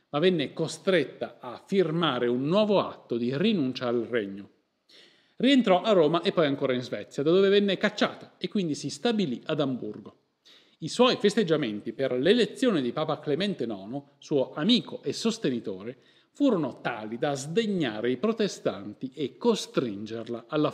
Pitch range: 125-200 Hz